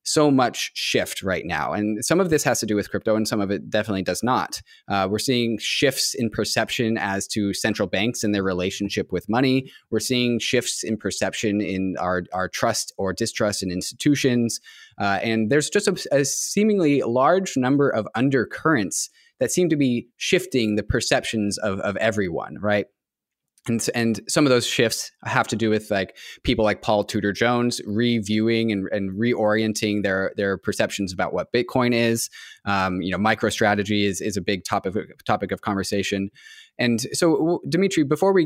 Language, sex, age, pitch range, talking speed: English, male, 20-39, 100-130 Hz, 180 wpm